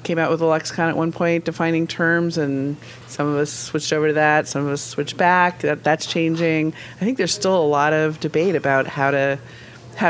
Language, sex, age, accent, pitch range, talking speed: English, female, 40-59, American, 135-155 Hz, 225 wpm